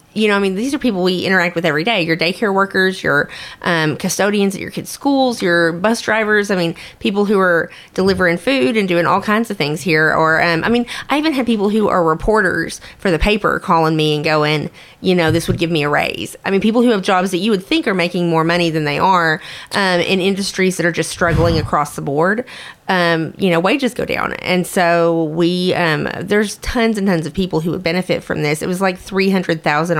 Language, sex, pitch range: English, female, 160-195 Hz